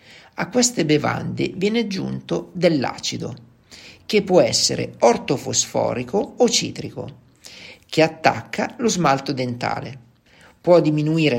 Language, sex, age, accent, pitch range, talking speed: Italian, male, 50-69, native, 120-170 Hz, 100 wpm